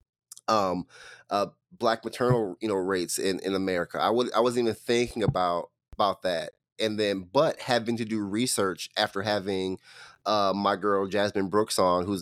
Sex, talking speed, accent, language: male, 170 wpm, American, English